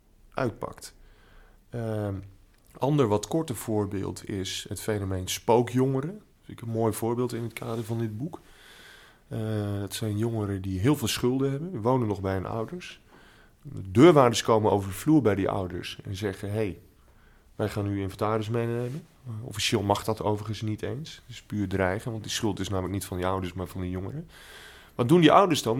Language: Dutch